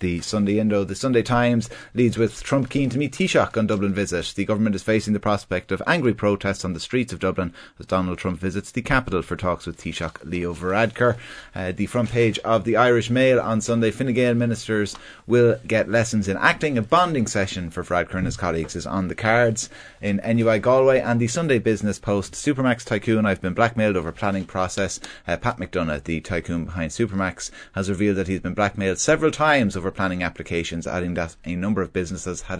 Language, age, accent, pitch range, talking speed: English, 30-49, Irish, 90-110 Hz, 205 wpm